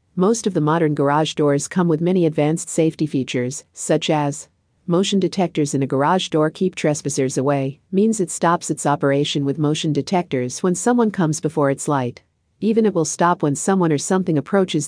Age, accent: 50-69, American